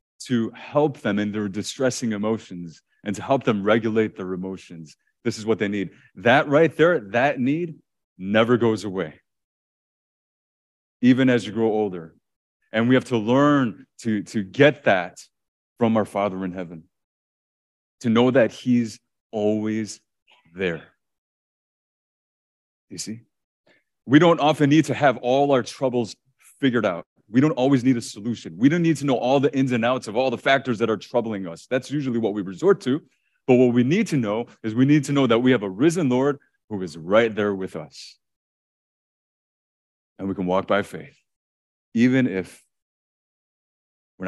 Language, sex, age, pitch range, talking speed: English, male, 30-49, 95-130 Hz, 170 wpm